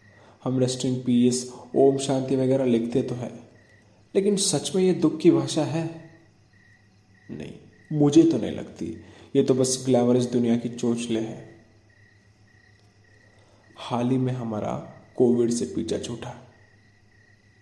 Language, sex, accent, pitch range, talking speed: Hindi, male, native, 110-135 Hz, 135 wpm